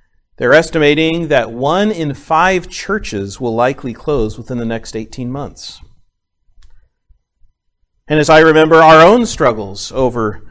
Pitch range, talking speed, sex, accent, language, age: 105-170 Hz, 130 wpm, male, American, English, 40-59